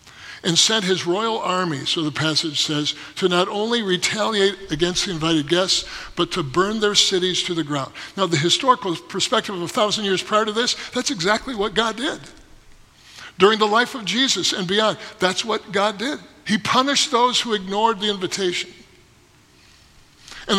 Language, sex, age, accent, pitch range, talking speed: English, male, 60-79, American, 180-230 Hz, 175 wpm